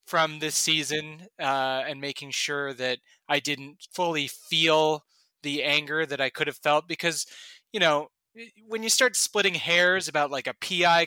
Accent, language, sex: American, English, male